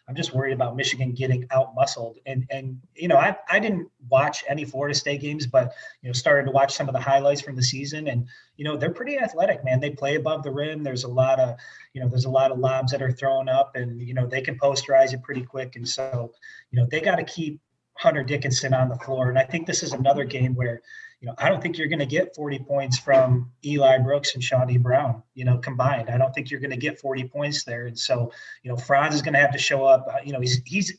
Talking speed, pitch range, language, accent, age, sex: 260 wpm, 130-150 Hz, English, American, 30-49, male